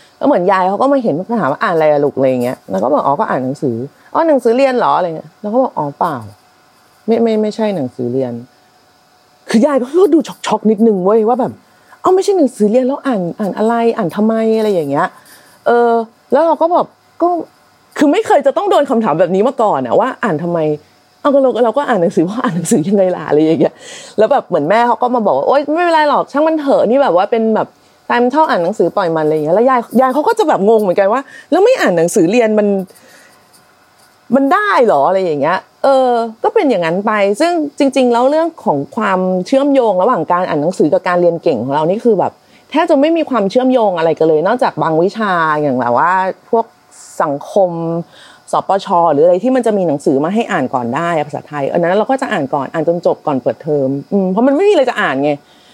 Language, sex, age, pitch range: Thai, female, 30-49, 170-270 Hz